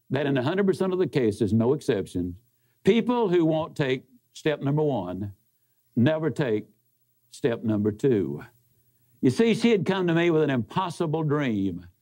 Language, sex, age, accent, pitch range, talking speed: English, male, 60-79, American, 120-185 Hz, 155 wpm